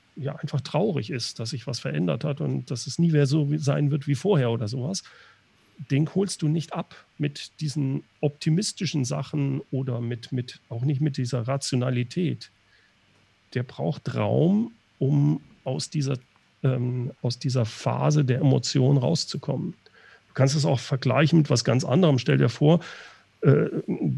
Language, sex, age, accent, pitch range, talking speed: German, male, 40-59, German, 125-155 Hz, 160 wpm